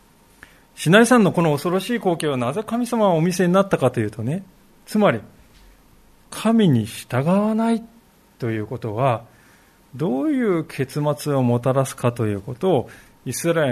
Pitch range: 130-200 Hz